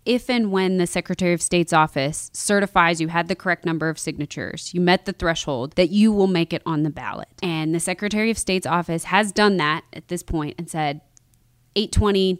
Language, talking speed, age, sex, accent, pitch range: English, 210 wpm, 20-39, female, American, 165-215 Hz